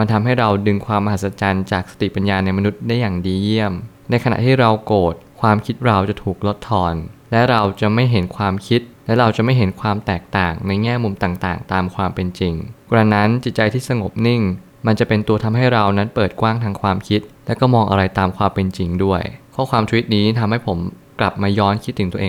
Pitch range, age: 95-115 Hz, 20-39